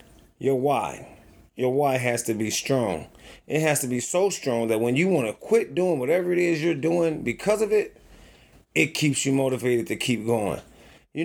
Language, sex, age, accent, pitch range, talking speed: English, male, 30-49, American, 120-160 Hz, 195 wpm